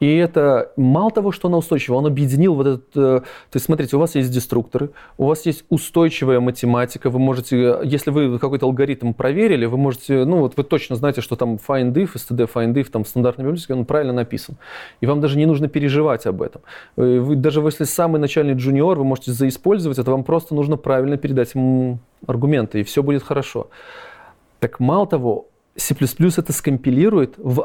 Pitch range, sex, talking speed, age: 125-155 Hz, male, 185 wpm, 20-39